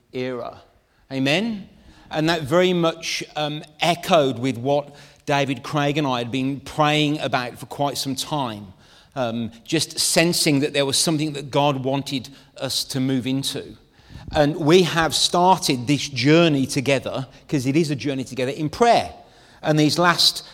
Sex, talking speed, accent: male, 160 wpm, British